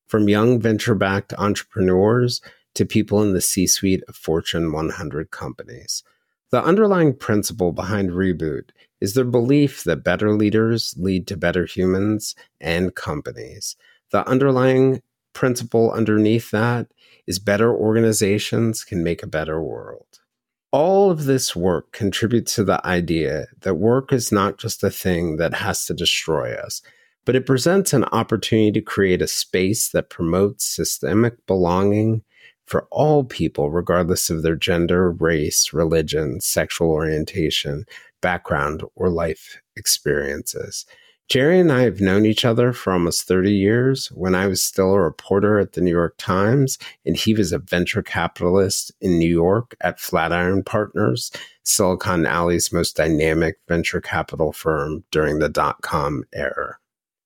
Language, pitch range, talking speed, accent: English, 90-115 Hz, 145 wpm, American